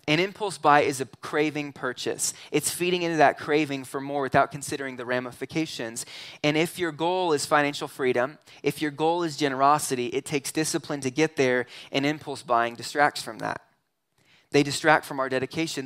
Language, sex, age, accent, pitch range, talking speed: English, male, 20-39, American, 135-165 Hz, 180 wpm